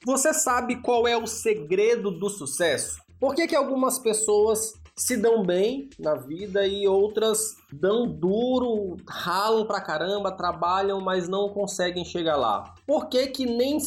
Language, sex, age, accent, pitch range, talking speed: Portuguese, male, 20-39, Brazilian, 145-210 Hz, 150 wpm